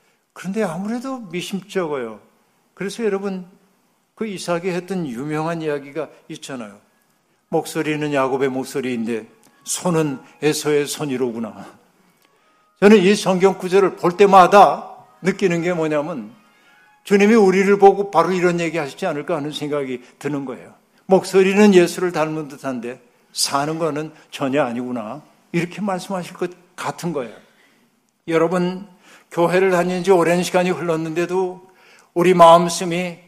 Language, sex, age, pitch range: Korean, male, 60-79, 155-190 Hz